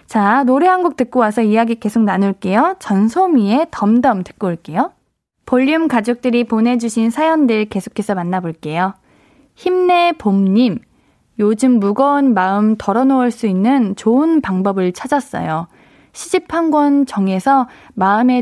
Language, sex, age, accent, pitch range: Korean, female, 20-39, native, 200-275 Hz